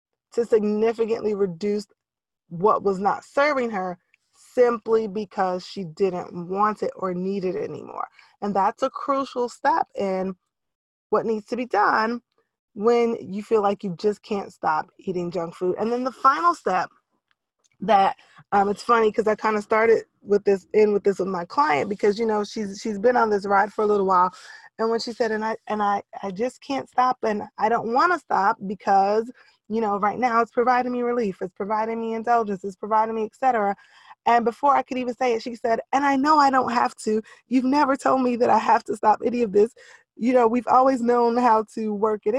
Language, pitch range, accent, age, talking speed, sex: English, 200-245 Hz, American, 20-39, 210 wpm, female